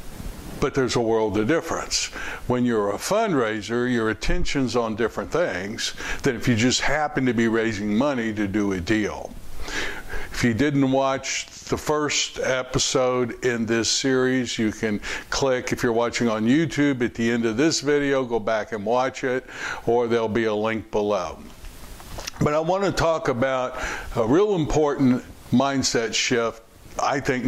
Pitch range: 110-140 Hz